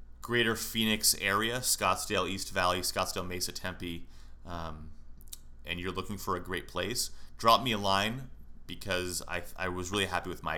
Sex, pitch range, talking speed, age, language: male, 85-115 Hz, 165 wpm, 30-49, English